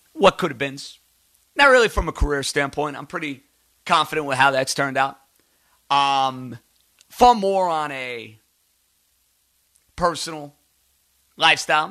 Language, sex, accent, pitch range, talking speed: English, male, American, 105-150 Hz, 125 wpm